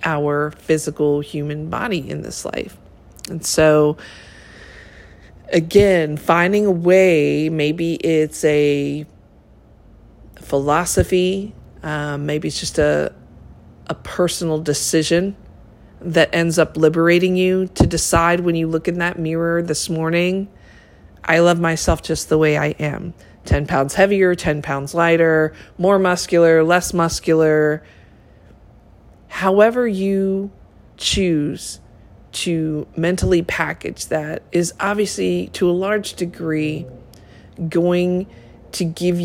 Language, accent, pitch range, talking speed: English, American, 150-170 Hz, 115 wpm